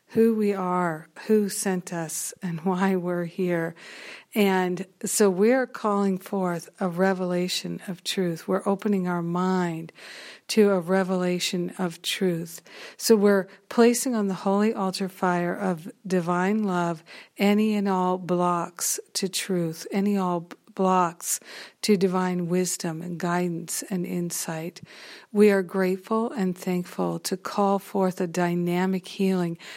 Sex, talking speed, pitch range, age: female, 135 wpm, 175-200 Hz, 60-79